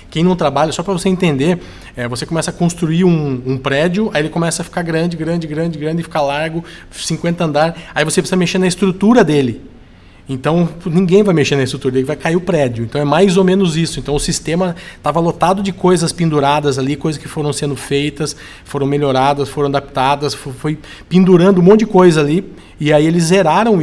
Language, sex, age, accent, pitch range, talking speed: Portuguese, male, 20-39, Brazilian, 140-175 Hz, 205 wpm